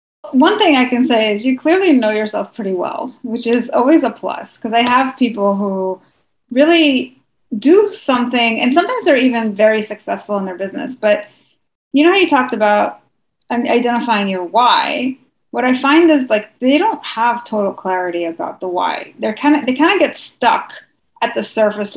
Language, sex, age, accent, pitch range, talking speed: English, female, 30-49, American, 200-265 Hz, 185 wpm